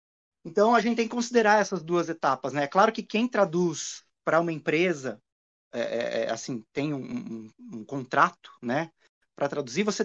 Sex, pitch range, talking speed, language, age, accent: male, 130-185 Hz, 175 wpm, Portuguese, 20-39, Brazilian